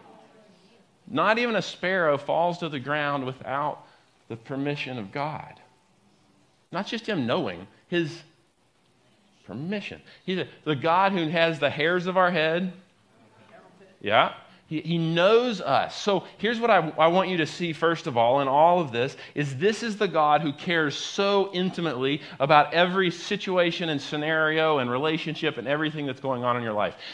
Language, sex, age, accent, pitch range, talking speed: English, male, 40-59, American, 140-180 Hz, 165 wpm